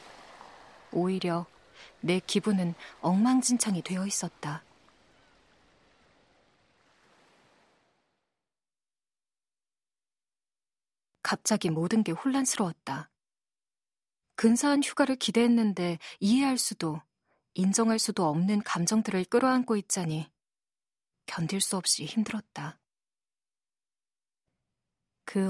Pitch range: 175-225 Hz